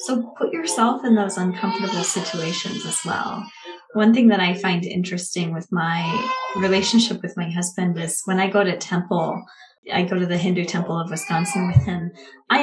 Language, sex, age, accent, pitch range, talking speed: English, female, 20-39, American, 190-230 Hz, 180 wpm